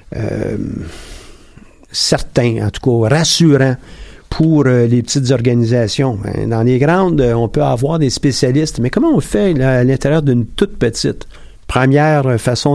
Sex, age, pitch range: male, 50-69, 115-145 Hz